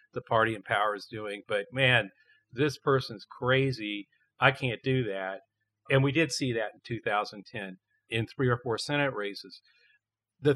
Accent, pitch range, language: American, 125-155 Hz, English